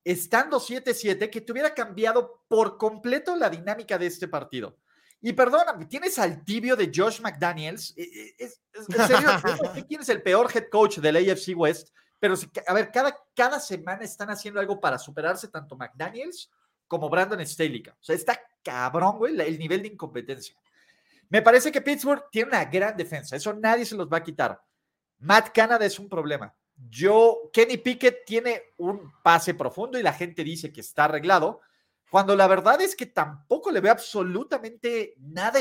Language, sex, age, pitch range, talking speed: Spanish, male, 40-59, 165-240 Hz, 165 wpm